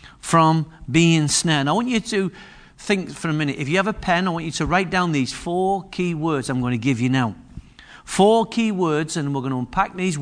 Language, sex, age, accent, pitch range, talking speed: English, male, 50-69, British, 150-195 Hz, 240 wpm